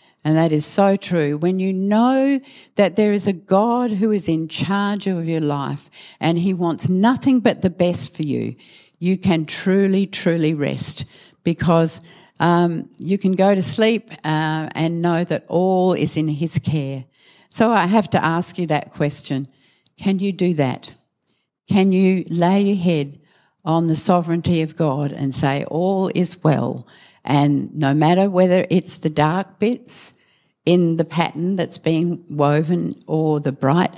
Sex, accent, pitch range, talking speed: female, Australian, 145-190 Hz, 165 wpm